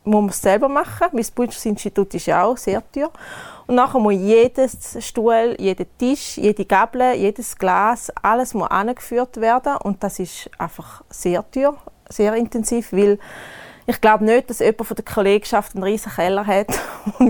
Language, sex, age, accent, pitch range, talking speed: German, female, 20-39, Austrian, 200-235 Hz, 170 wpm